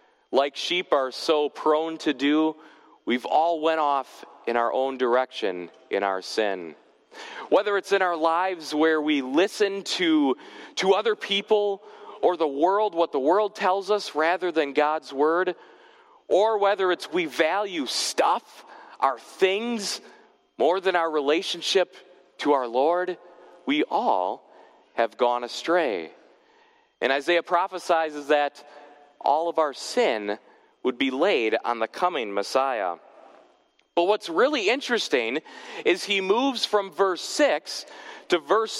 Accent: American